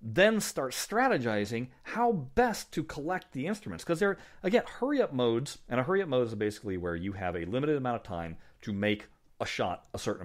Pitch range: 85-125 Hz